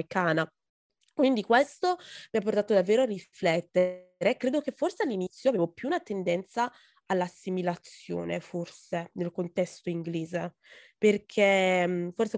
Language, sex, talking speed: Italian, female, 115 wpm